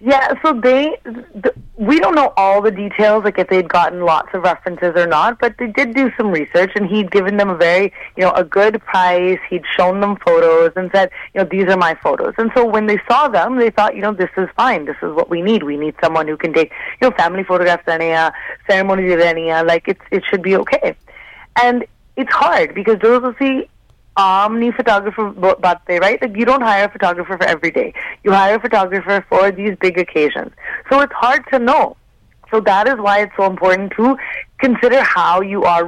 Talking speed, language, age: 210 wpm, English, 30-49